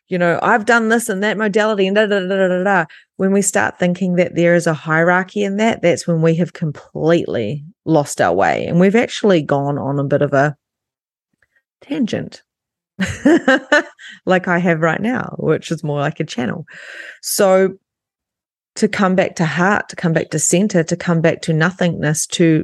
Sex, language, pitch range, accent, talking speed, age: female, English, 165-200 Hz, Australian, 190 wpm, 30-49